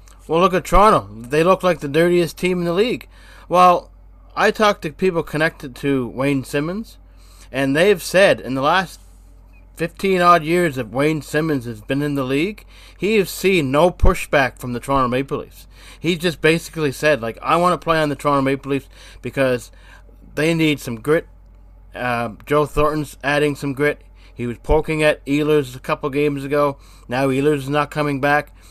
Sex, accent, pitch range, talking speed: male, American, 125-165 Hz, 185 wpm